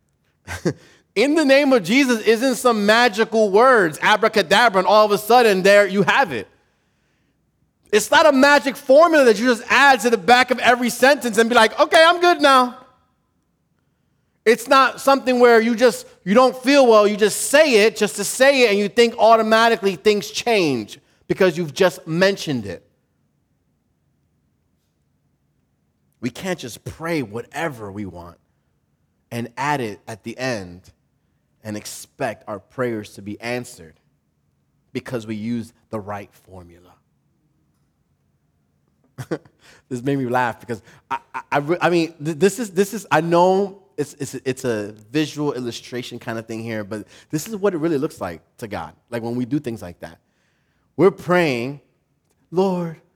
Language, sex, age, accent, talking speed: English, male, 30-49, American, 160 wpm